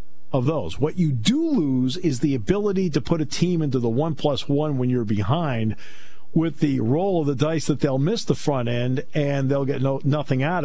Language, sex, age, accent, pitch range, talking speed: English, male, 50-69, American, 115-165 Hz, 220 wpm